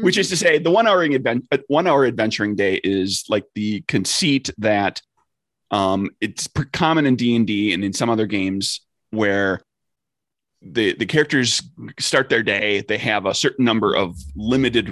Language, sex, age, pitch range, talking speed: English, male, 30-49, 100-130 Hz, 175 wpm